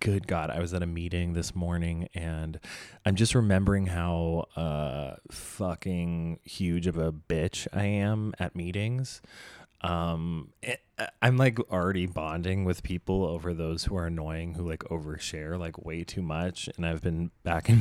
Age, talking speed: 20-39, 160 wpm